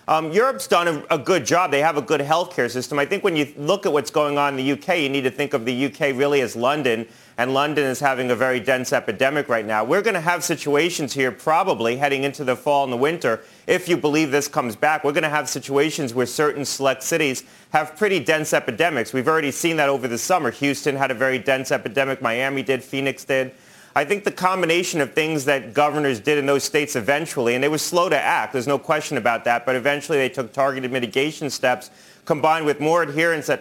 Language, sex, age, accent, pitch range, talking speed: English, male, 30-49, American, 130-150 Hz, 230 wpm